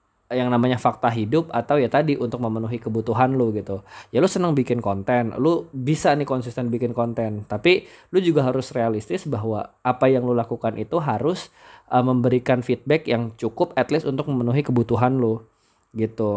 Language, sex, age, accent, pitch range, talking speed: Indonesian, male, 20-39, native, 115-140 Hz, 170 wpm